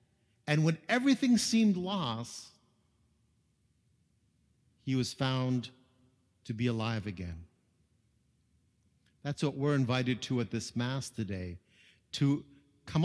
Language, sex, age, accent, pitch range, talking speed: English, male, 50-69, American, 120-175 Hz, 105 wpm